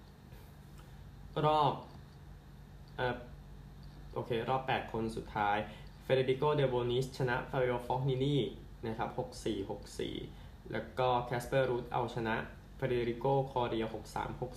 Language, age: Thai, 20-39